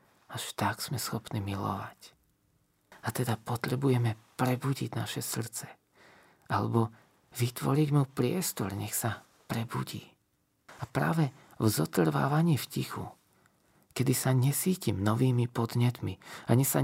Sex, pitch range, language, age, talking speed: male, 115-140 Hz, Slovak, 40-59, 110 wpm